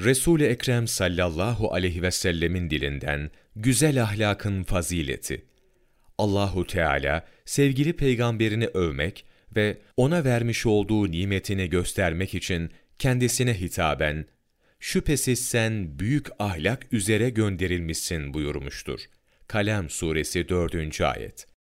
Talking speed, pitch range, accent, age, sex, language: 95 wpm, 85-115 Hz, native, 40-59, male, Turkish